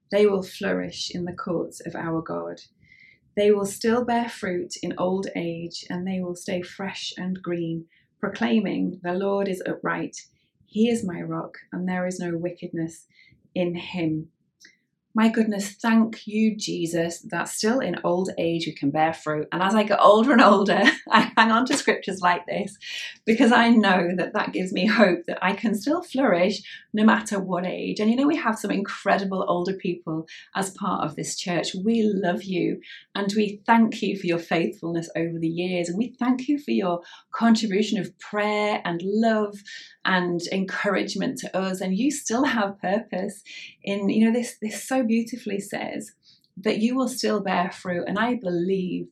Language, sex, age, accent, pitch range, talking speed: English, female, 30-49, British, 175-220 Hz, 180 wpm